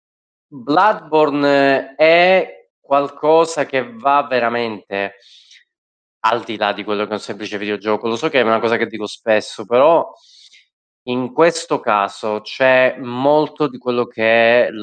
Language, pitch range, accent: Italian, 100-140 Hz, native